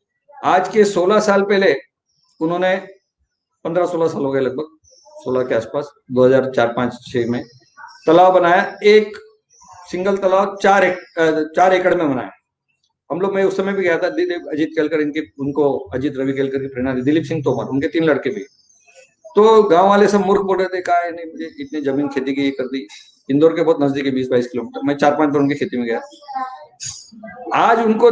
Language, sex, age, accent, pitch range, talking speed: Marathi, male, 50-69, native, 155-205 Hz, 180 wpm